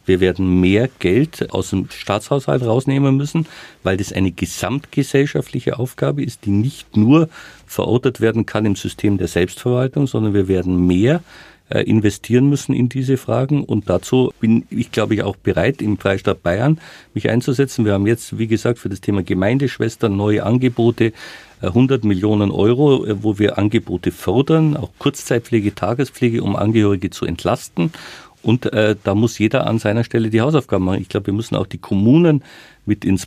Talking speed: 165 wpm